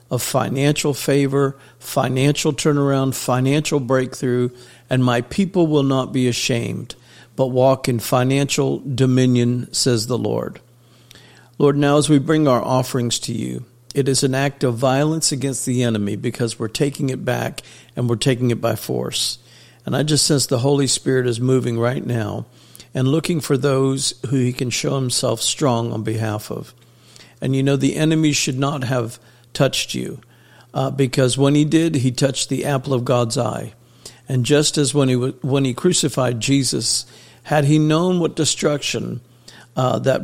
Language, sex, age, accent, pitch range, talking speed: English, male, 50-69, American, 120-145 Hz, 170 wpm